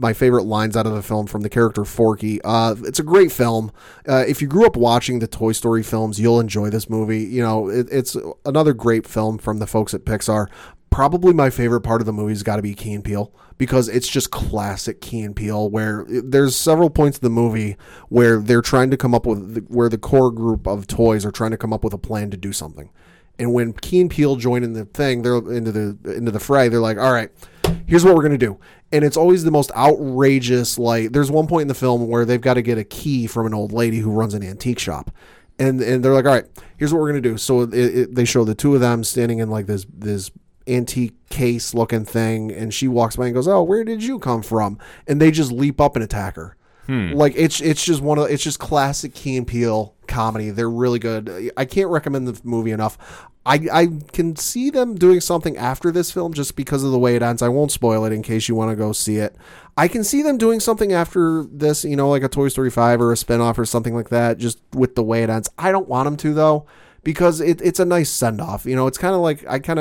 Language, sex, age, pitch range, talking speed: English, male, 30-49, 110-145 Hz, 255 wpm